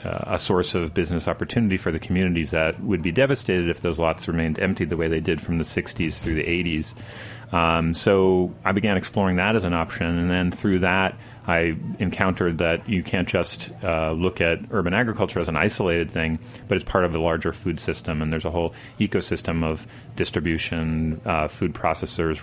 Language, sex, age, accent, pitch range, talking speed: English, male, 40-59, American, 80-95 Hz, 195 wpm